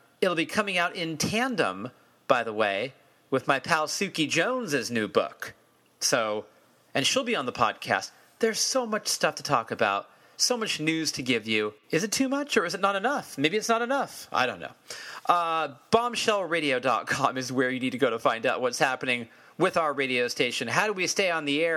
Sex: male